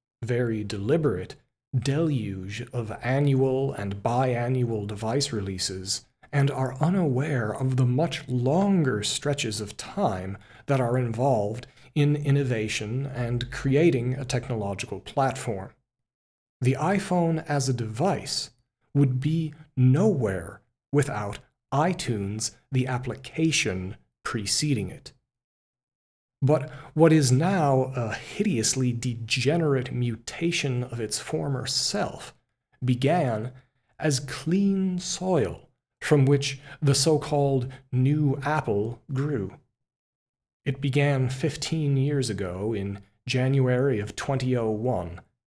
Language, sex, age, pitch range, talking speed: English, male, 40-59, 115-145 Hz, 100 wpm